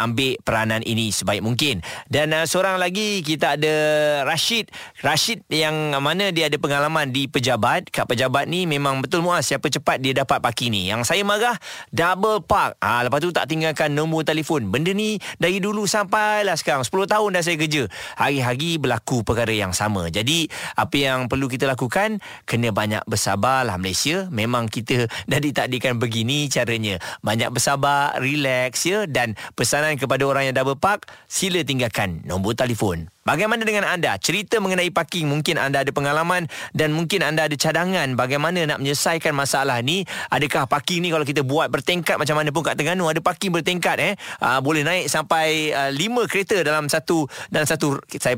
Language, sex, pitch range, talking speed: Malay, male, 125-165 Hz, 175 wpm